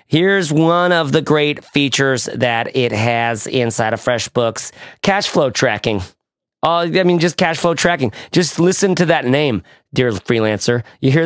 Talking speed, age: 165 wpm, 30-49